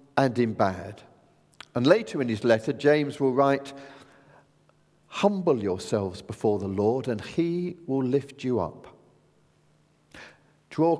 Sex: male